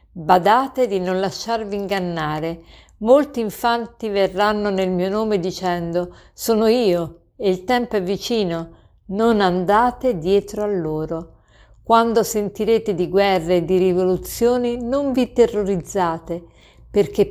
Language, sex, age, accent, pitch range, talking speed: Italian, female, 50-69, native, 180-230 Hz, 120 wpm